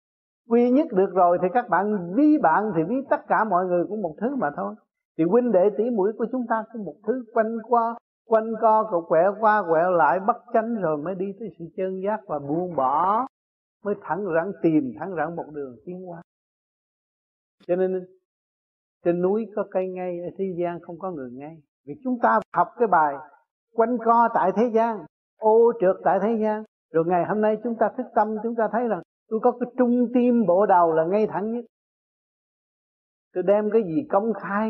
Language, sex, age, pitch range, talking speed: Vietnamese, male, 60-79, 175-230 Hz, 215 wpm